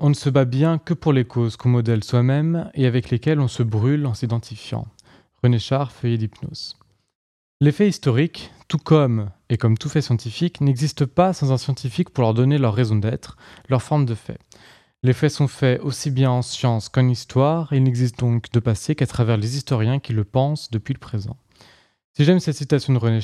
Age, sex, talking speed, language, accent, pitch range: 20-39, male, 210 wpm, French, French, 115-150 Hz